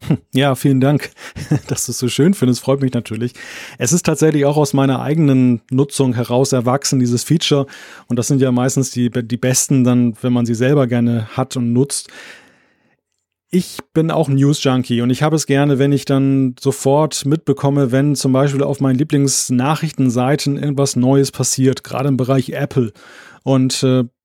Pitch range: 130-155 Hz